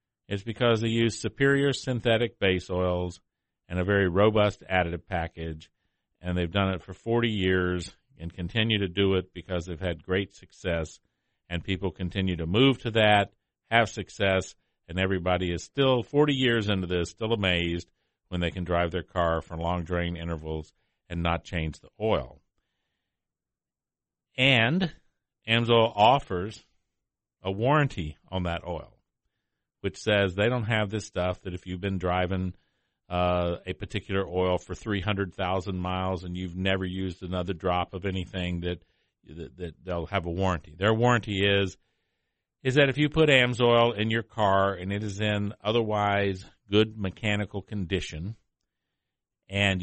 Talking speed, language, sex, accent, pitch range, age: 155 wpm, English, male, American, 90-110 Hz, 50-69